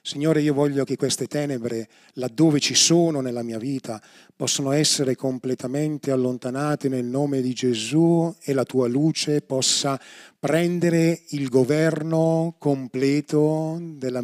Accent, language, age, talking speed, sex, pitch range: native, Italian, 30-49, 125 wpm, male, 130-155 Hz